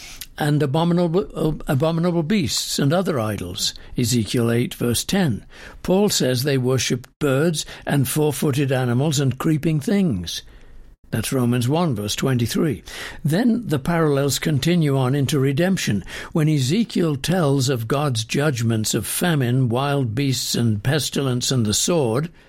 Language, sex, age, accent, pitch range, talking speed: English, male, 60-79, British, 125-170 Hz, 135 wpm